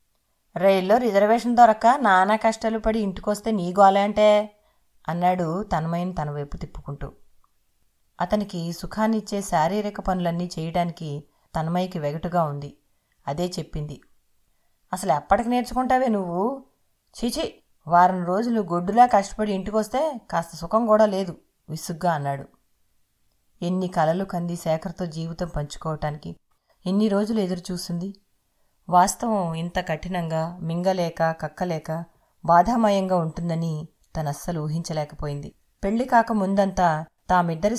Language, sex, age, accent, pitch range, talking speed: English, female, 30-49, Indian, 160-200 Hz, 90 wpm